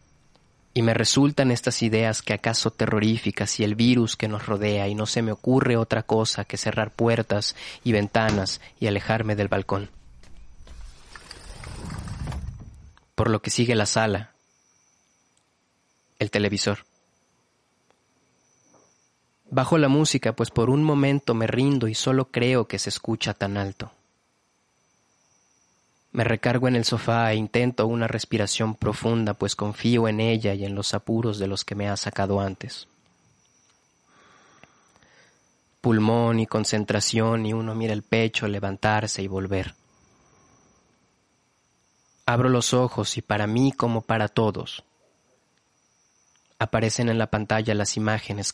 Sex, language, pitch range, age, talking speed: male, Spanish, 105-115 Hz, 30-49, 130 wpm